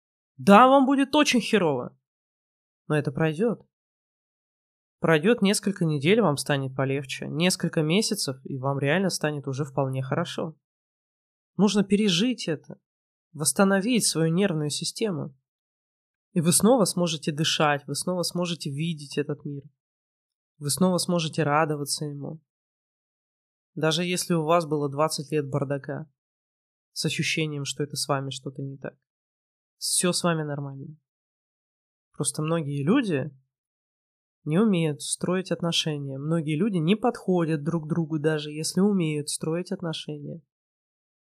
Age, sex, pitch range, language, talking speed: 20-39, male, 145-185 Hz, Russian, 125 wpm